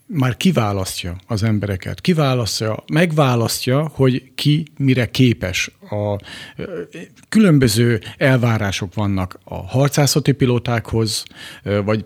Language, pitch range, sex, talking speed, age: Hungarian, 110-135 Hz, male, 95 wpm, 50-69